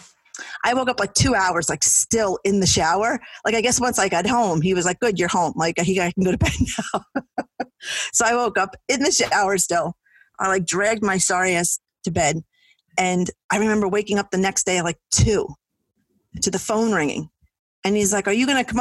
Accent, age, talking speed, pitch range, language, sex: American, 40-59, 225 wpm, 180-225 Hz, English, female